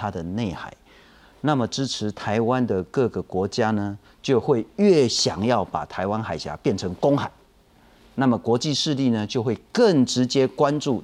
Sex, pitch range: male, 110-155 Hz